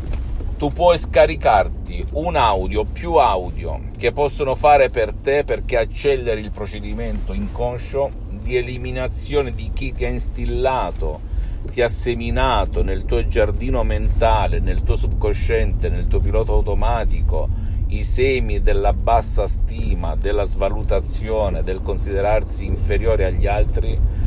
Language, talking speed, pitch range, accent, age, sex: Italian, 125 wpm, 85-115 Hz, native, 50-69, male